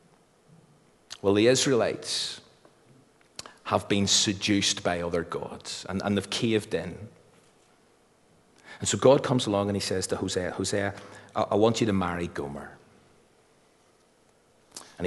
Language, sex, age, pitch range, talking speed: English, male, 40-59, 105-140 Hz, 125 wpm